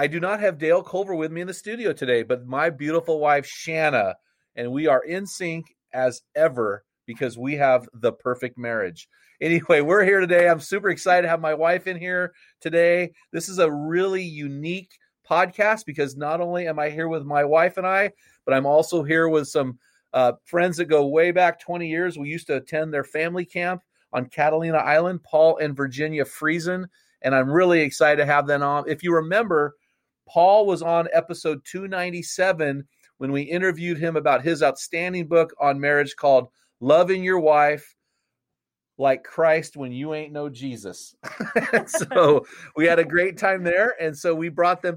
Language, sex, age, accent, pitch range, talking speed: English, male, 30-49, American, 150-180 Hz, 185 wpm